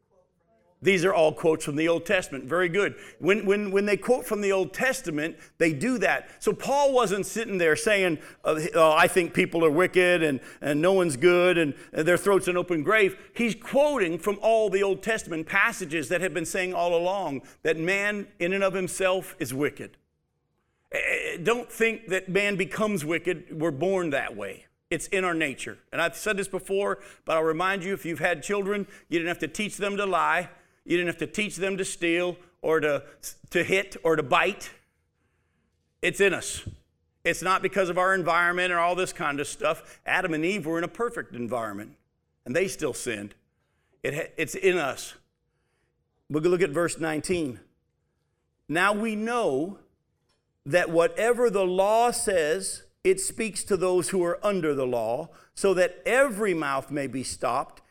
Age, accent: 50-69, American